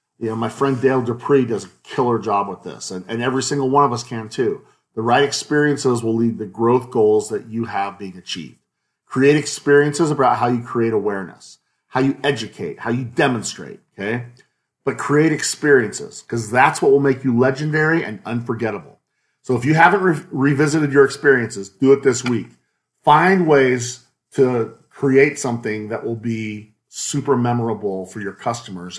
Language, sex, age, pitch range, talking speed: English, male, 40-59, 120-170 Hz, 175 wpm